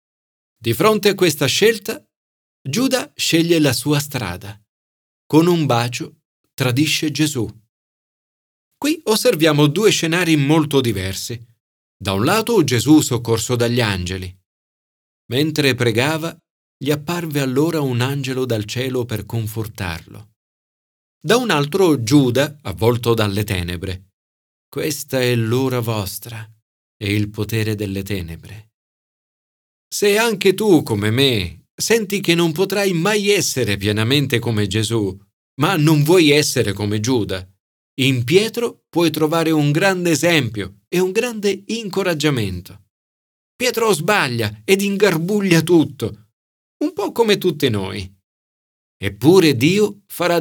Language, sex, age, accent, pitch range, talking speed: Italian, male, 40-59, native, 105-165 Hz, 120 wpm